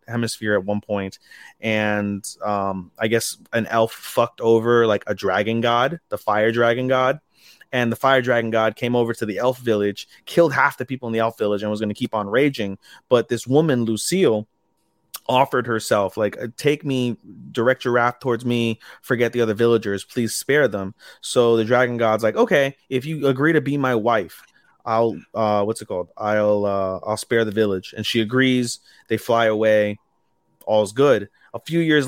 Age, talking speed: 30-49, 190 wpm